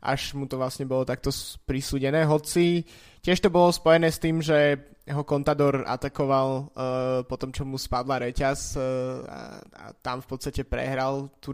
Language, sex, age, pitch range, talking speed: Slovak, male, 20-39, 130-150 Hz, 170 wpm